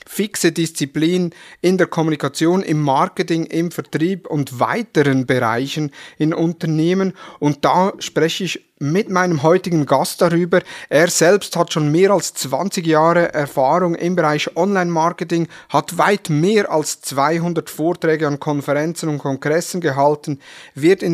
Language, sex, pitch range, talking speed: German, male, 145-175 Hz, 135 wpm